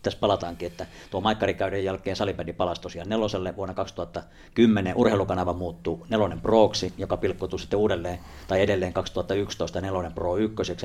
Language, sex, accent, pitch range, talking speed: Finnish, male, native, 90-105 Hz, 145 wpm